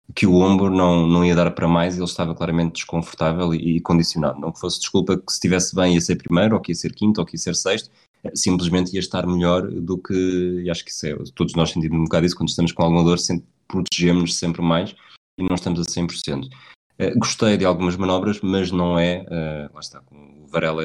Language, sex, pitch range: Portuguese, male, 85-95 Hz